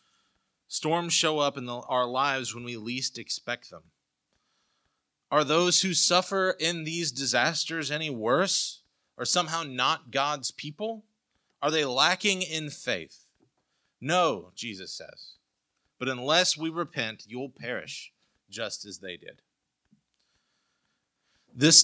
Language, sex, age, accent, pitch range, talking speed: English, male, 30-49, American, 130-170 Hz, 120 wpm